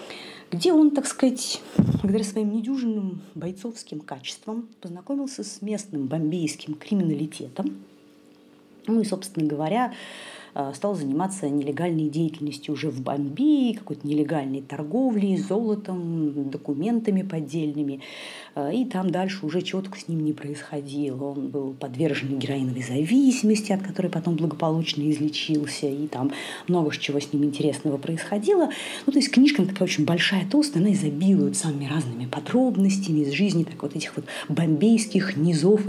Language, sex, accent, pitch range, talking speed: Russian, female, native, 150-210 Hz, 130 wpm